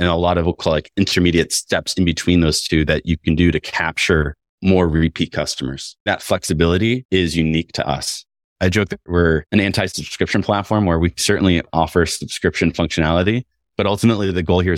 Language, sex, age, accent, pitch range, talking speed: English, male, 30-49, American, 80-100 Hz, 180 wpm